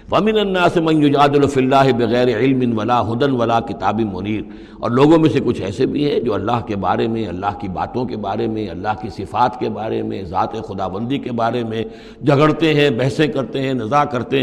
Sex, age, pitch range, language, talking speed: male, 60-79, 115-150 Hz, Urdu, 210 wpm